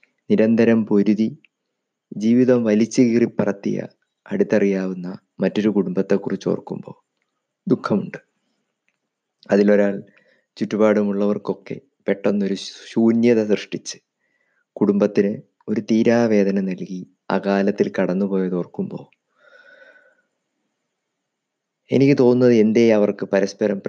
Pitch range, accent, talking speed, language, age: 95-115 Hz, Indian, 70 wpm, English, 20-39